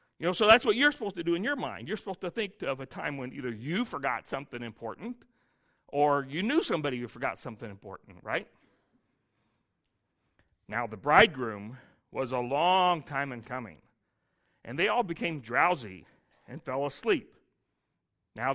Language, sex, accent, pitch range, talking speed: English, male, American, 125-200 Hz, 170 wpm